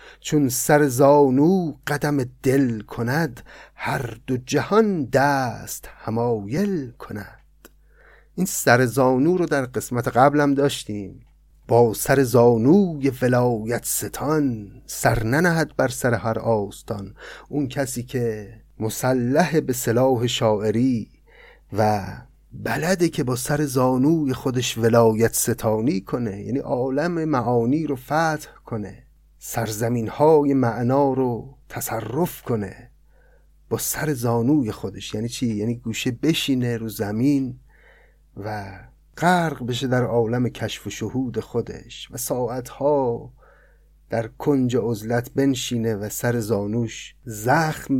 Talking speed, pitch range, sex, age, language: 115 wpm, 115-140 Hz, male, 30-49, Persian